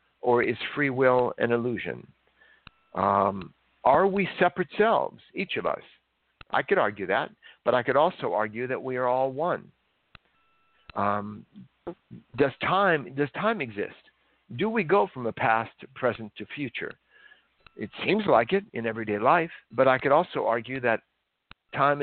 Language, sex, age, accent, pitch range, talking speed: English, male, 60-79, American, 120-175 Hz, 155 wpm